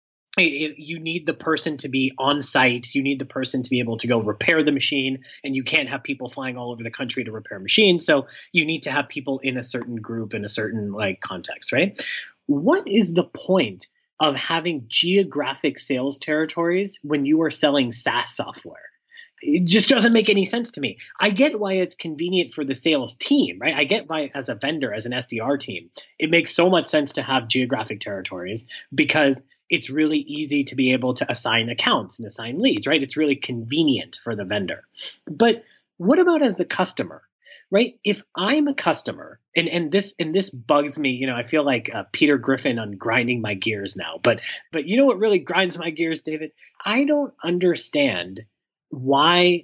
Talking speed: 200 wpm